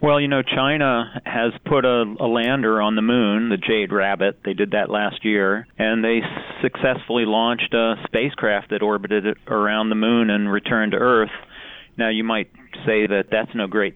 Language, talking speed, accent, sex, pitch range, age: English, 190 wpm, American, male, 100-115 Hz, 40-59